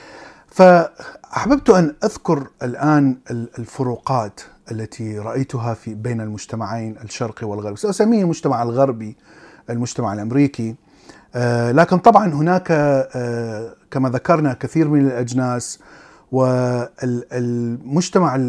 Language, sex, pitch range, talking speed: Arabic, male, 120-145 Hz, 85 wpm